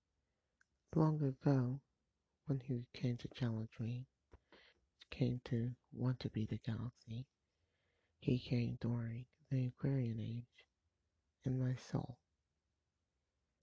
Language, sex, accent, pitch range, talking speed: English, male, American, 85-125 Hz, 105 wpm